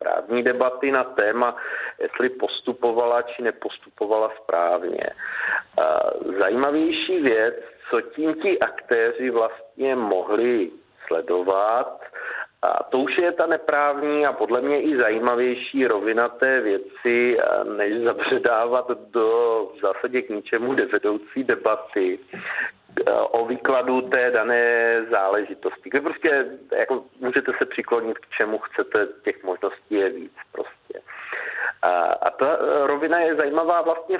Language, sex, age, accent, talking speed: Czech, male, 40-59, native, 120 wpm